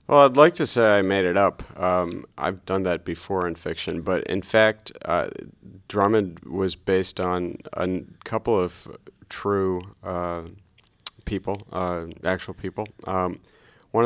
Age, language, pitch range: 40-59, English, 90-95 Hz